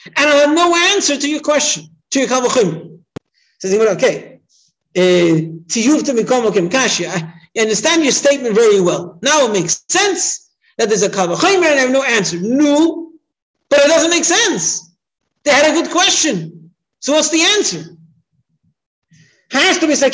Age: 50-69